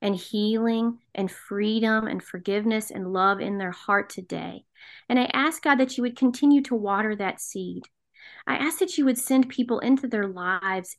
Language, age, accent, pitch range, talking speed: English, 40-59, American, 200-255 Hz, 185 wpm